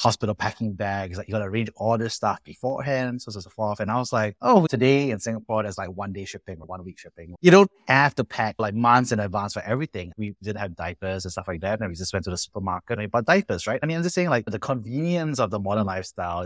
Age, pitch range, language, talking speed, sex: 30-49, 90-115 Hz, English, 275 wpm, male